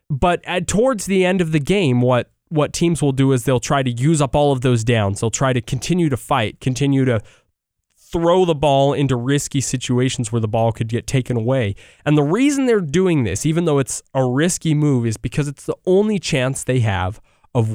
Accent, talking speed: American, 215 wpm